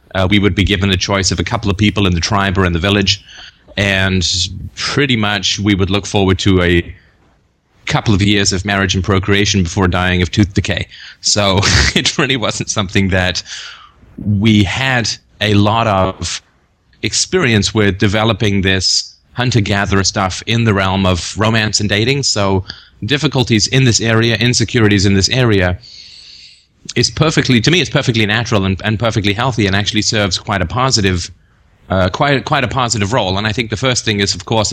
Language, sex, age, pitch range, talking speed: English, male, 30-49, 95-115 Hz, 180 wpm